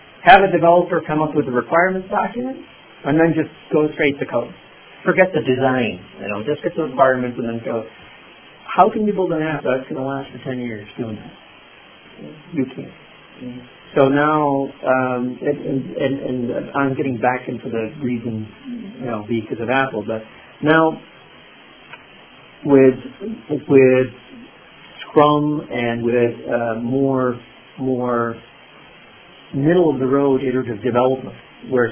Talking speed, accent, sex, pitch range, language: 145 wpm, American, male, 120-145 Hz, English